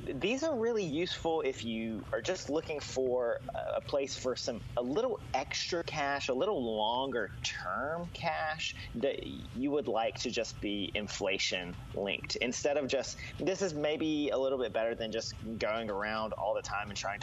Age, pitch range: 30-49, 105-140 Hz